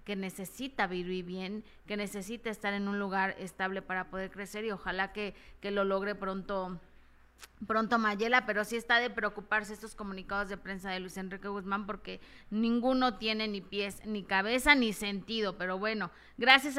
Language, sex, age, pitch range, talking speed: Spanish, female, 30-49, 195-220 Hz, 170 wpm